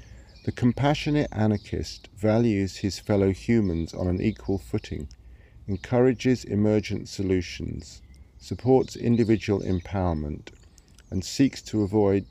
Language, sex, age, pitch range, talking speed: English, male, 50-69, 85-110 Hz, 100 wpm